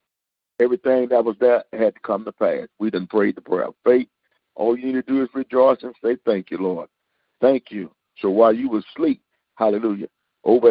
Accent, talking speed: American, 205 wpm